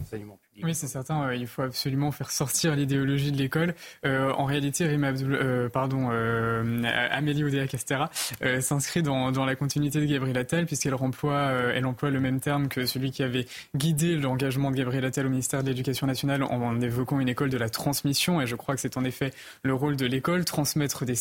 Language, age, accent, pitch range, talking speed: French, 20-39, French, 130-150 Hz, 200 wpm